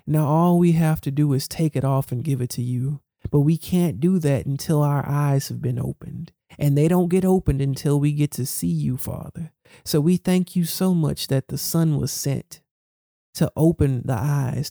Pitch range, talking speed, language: 140-175 Hz, 215 wpm, English